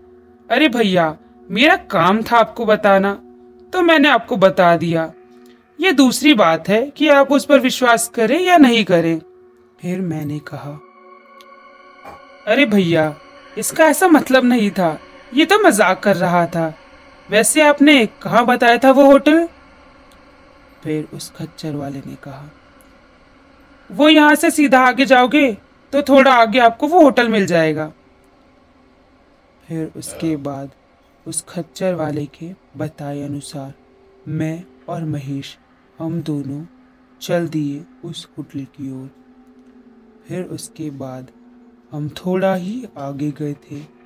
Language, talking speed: Hindi, 130 wpm